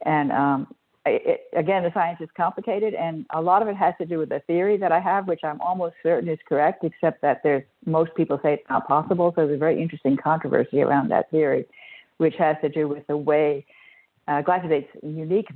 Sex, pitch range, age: female, 140-175 Hz, 60-79